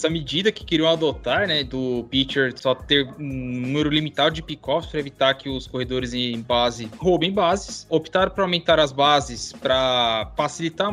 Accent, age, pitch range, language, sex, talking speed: Brazilian, 20-39, 145-195 Hz, Portuguese, male, 165 wpm